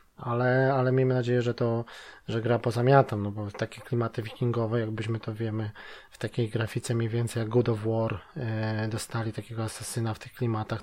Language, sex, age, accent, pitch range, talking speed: Polish, male, 20-39, native, 120-130 Hz, 190 wpm